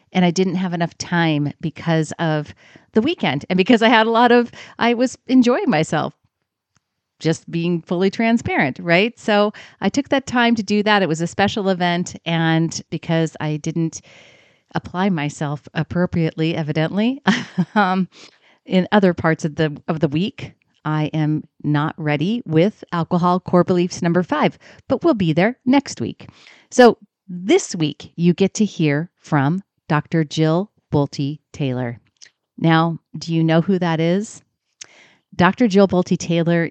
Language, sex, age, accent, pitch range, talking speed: English, female, 40-59, American, 155-190 Hz, 150 wpm